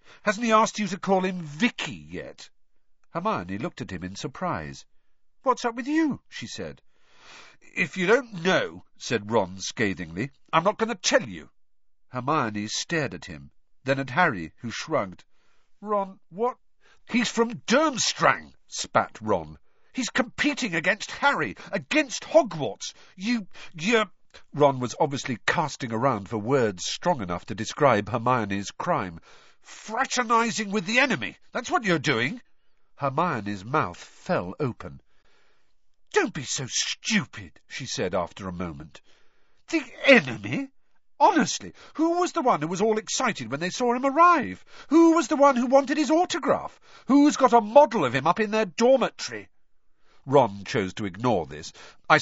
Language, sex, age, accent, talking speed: English, male, 50-69, British, 150 wpm